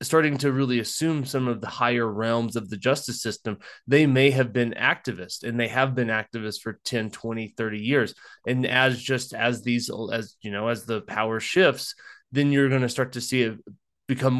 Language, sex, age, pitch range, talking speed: English, male, 20-39, 115-135 Hz, 200 wpm